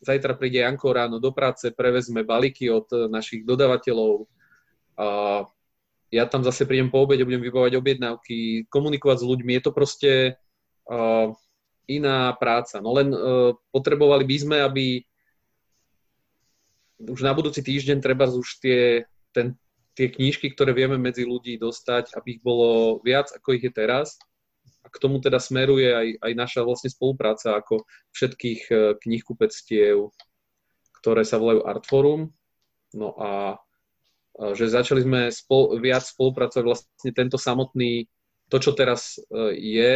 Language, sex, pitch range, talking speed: Slovak, male, 115-135 Hz, 135 wpm